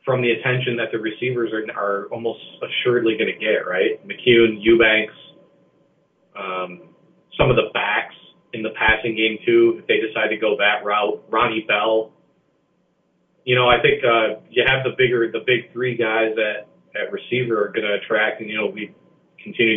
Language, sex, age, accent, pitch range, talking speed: English, male, 40-59, American, 110-125 Hz, 180 wpm